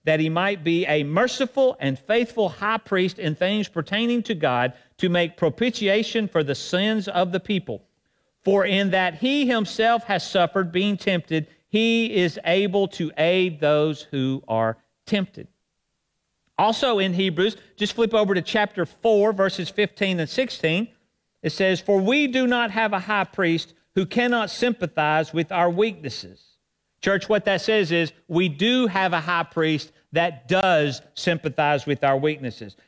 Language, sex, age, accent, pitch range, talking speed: English, male, 50-69, American, 160-220 Hz, 160 wpm